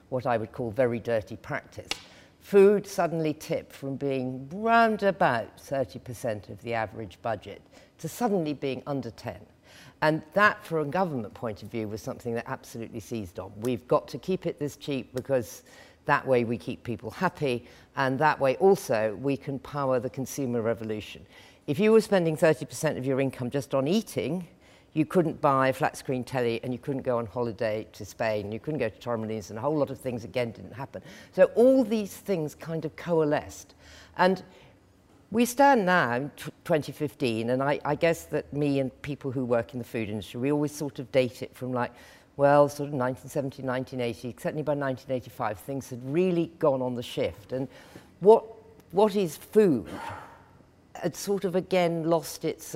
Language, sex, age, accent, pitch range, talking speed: English, female, 50-69, British, 120-155 Hz, 185 wpm